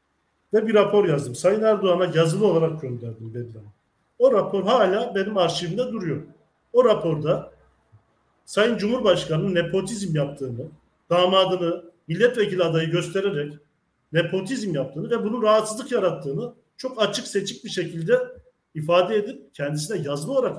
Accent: native